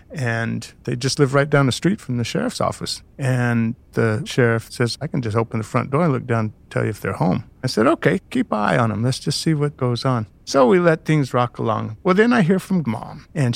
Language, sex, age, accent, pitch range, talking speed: English, male, 50-69, American, 115-145 Hz, 255 wpm